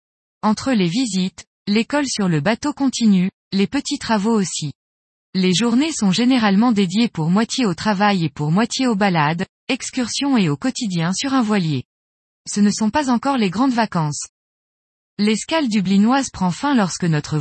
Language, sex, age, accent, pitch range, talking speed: French, female, 20-39, French, 180-245 Hz, 160 wpm